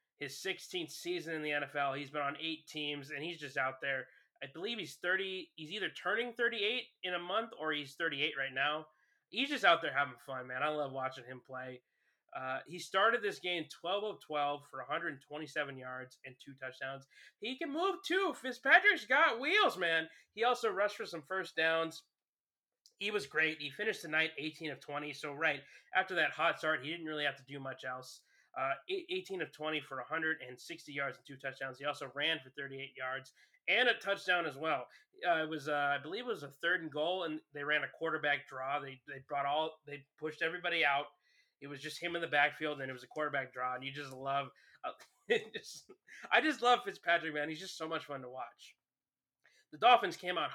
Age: 20-39